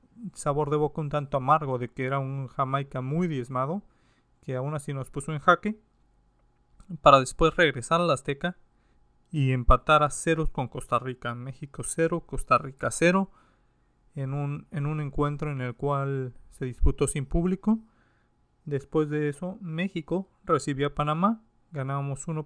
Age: 40-59